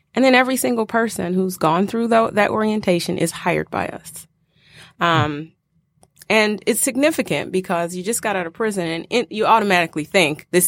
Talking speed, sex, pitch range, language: 180 wpm, female, 155-185 Hz, English